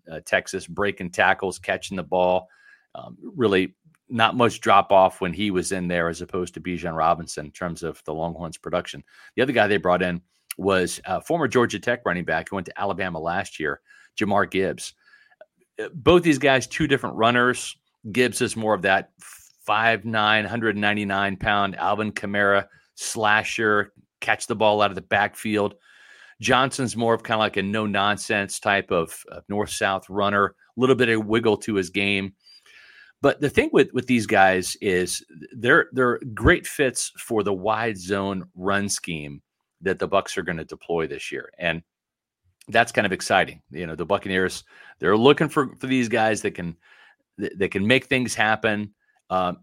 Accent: American